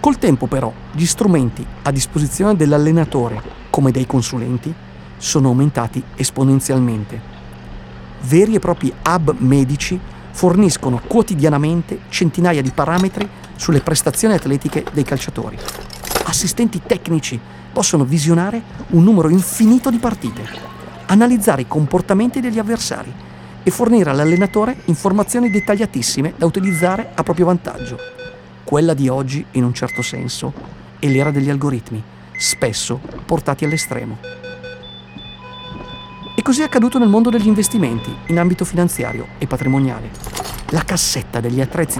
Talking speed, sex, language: 120 wpm, male, Italian